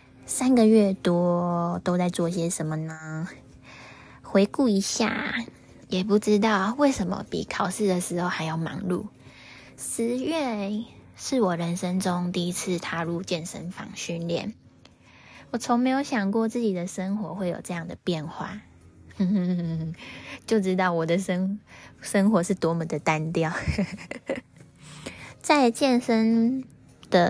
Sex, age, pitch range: female, 10-29, 170-215 Hz